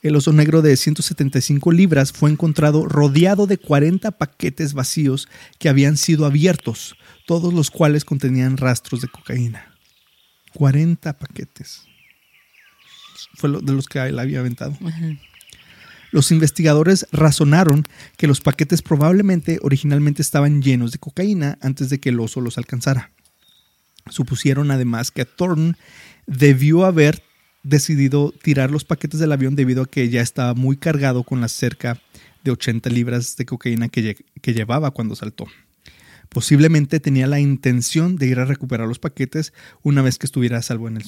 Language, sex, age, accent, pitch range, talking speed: Spanish, male, 30-49, Mexican, 125-155 Hz, 150 wpm